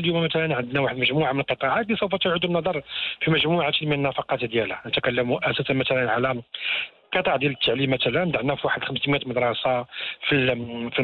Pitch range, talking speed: 130-155 Hz, 165 wpm